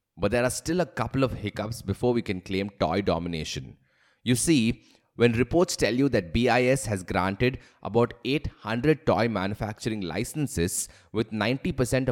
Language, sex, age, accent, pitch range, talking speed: English, male, 20-39, Indian, 100-135 Hz, 155 wpm